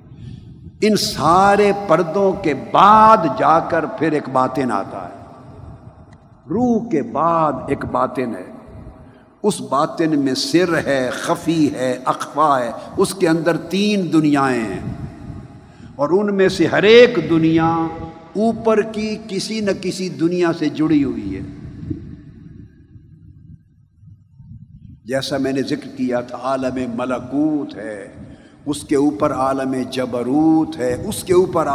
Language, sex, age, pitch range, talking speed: Urdu, male, 50-69, 130-185 Hz, 130 wpm